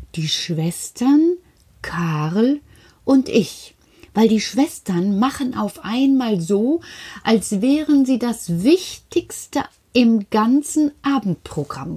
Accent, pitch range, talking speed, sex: German, 170-255 Hz, 100 wpm, female